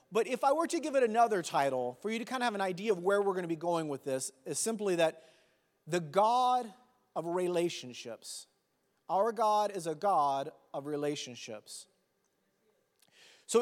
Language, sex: English, male